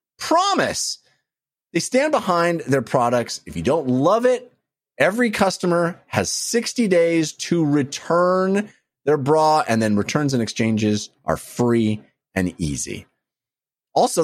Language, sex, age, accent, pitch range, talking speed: English, male, 30-49, American, 105-175 Hz, 125 wpm